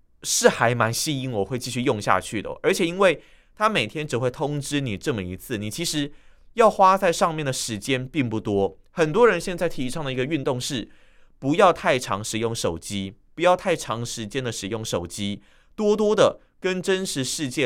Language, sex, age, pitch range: Chinese, male, 30-49, 115-175 Hz